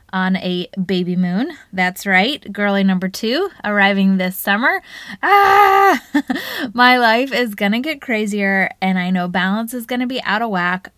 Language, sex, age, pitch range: English, female, 20-39, 185-250 Hz